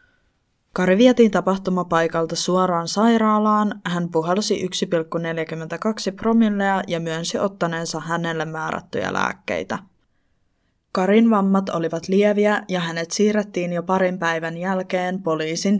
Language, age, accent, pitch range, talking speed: Finnish, 20-39, native, 170-200 Hz, 105 wpm